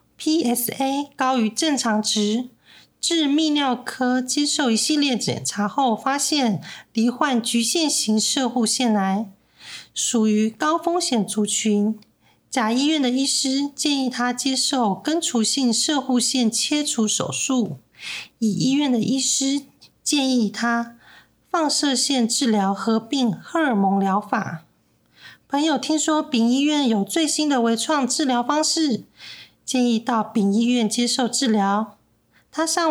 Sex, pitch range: female, 220-280 Hz